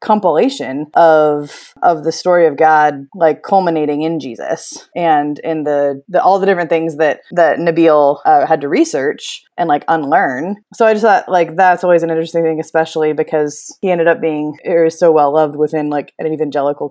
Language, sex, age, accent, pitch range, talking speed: English, female, 20-39, American, 155-195 Hz, 190 wpm